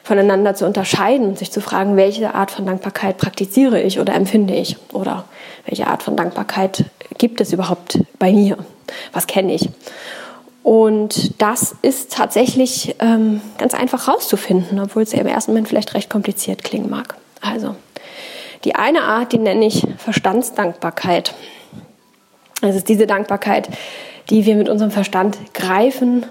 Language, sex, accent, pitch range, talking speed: German, female, German, 195-240 Hz, 150 wpm